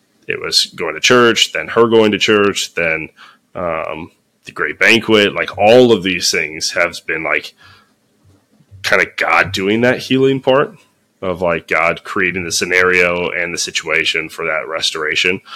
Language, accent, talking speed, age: English, American, 160 wpm, 20-39